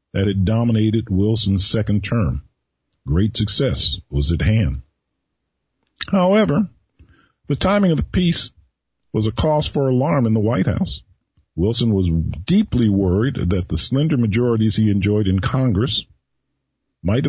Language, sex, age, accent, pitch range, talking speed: English, male, 50-69, American, 100-135 Hz, 135 wpm